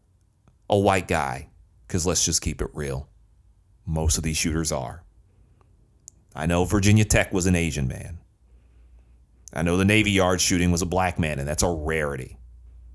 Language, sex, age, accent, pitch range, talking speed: English, male, 30-49, American, 85-100 Hz, 165 wpm